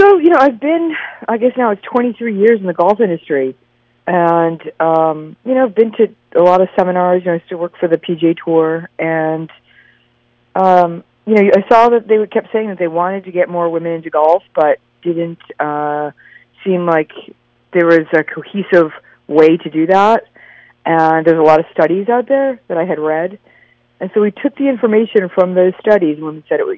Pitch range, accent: 155-200 Hz, American